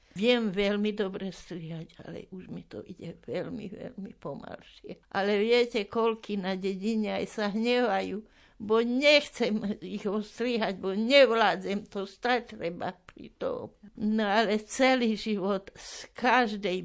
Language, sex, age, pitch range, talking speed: Slovak, female, 60-79, 185-225 Hz, 130 wpm